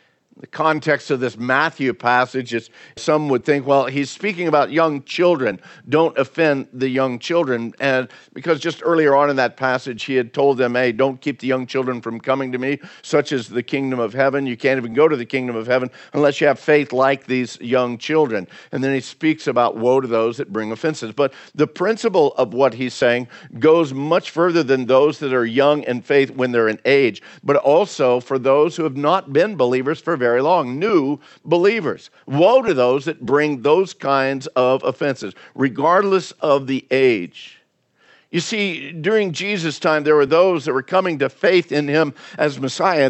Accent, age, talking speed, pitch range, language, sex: American, 50-69, 200 wpm, 130-160 Hz, English, male